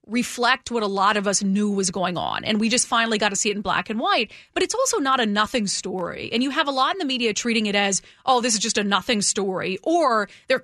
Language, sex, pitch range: English, female, 200-270 Hz